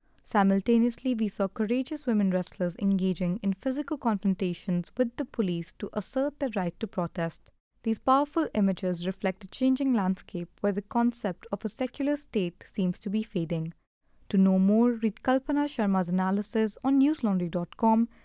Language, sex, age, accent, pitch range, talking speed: English, female, 20-39, Indian, 185-240 Hz, 150 wpm